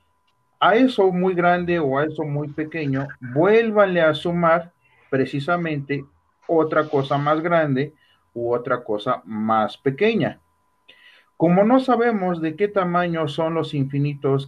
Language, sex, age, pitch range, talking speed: Spanish, male, 40-59, 125-155 Hz, 130 wpm